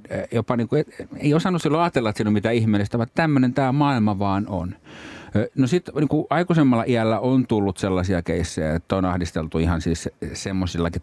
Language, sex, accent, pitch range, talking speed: Finnish, male, native, 80-110 Hz, 170 wpm